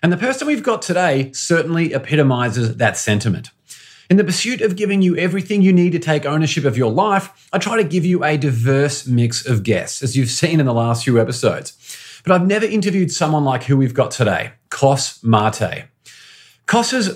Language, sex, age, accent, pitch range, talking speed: English, male, 30-49, Australian, 130-175 Hz, 195 wpm